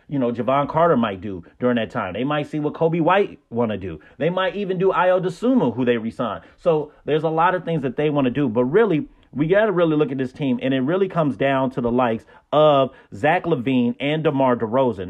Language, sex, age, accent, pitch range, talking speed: English, male, 30-49, American, 130-160 Hz, 240 wpm